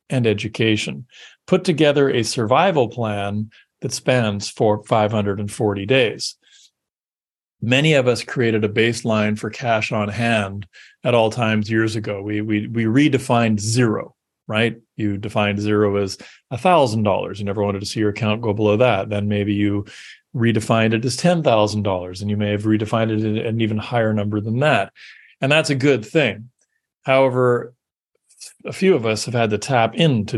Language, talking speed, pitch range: English, 165 wpm, 105-130 Hz